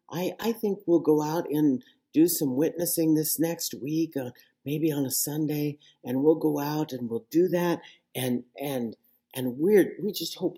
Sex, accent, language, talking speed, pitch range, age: male, American, English, 185 wpm, 150-225 Hz, 40-59